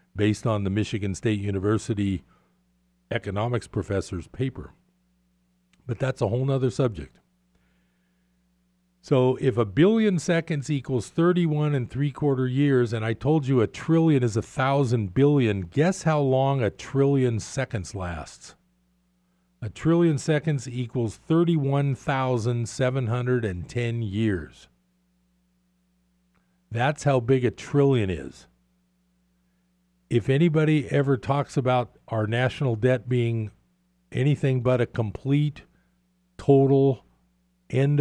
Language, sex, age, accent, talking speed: English, male, 50-69, American, 110 wpm